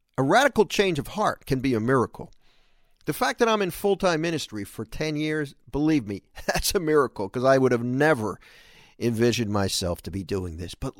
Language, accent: English, American